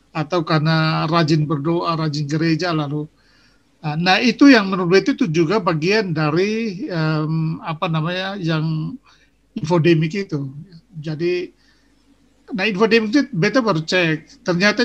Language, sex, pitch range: Indonesian, male, 165-230 Hz